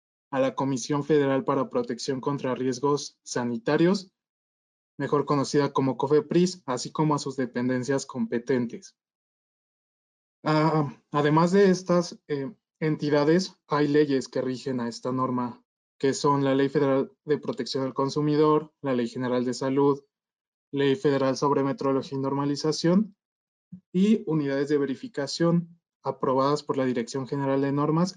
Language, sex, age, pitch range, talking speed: Portuguese, male, 20-39, 130-155 Hz, 130 wpm